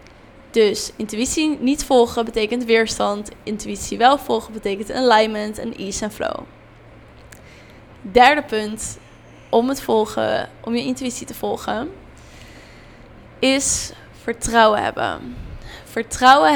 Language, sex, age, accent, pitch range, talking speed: Dutch, female, 10-29, Dutch, 210-240 Hz, 105 wpm